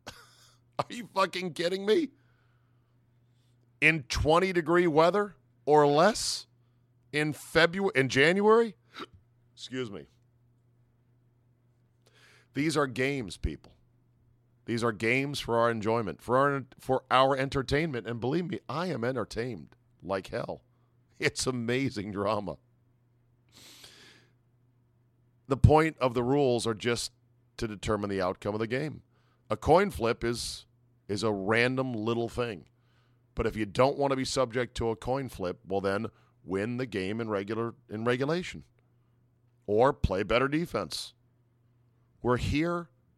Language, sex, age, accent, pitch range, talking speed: English, male, 50-69, American, 115-130 Hz, 130 wpm